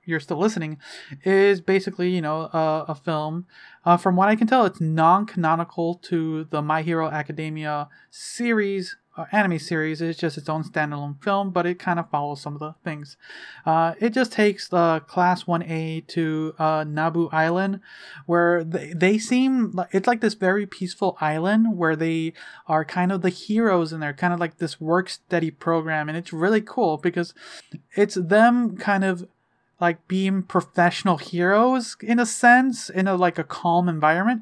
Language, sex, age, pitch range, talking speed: English, male, 30-49, 160-200 Hz, 180 wpm